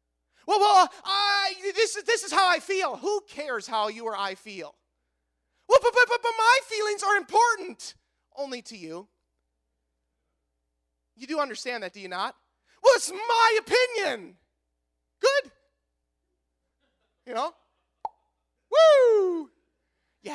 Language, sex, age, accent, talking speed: English, male, 30-49, American, 135 wpm